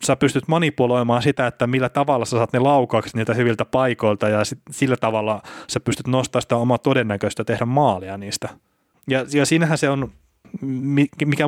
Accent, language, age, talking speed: native, Finnish, 30-49, 165 wpm